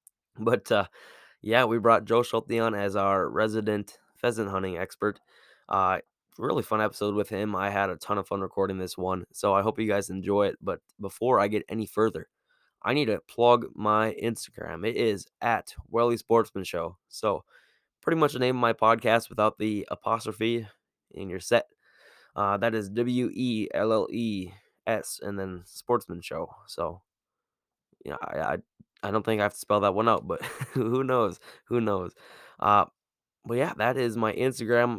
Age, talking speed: 10-29, 175 wpm